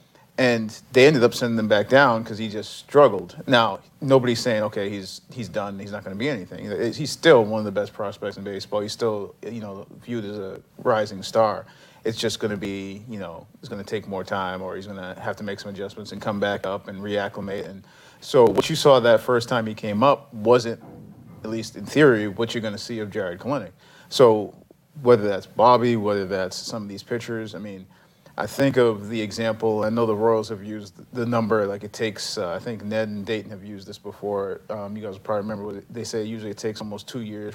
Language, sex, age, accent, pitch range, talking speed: English, male, 40-59, American, 100-115 Hz, 235 wpm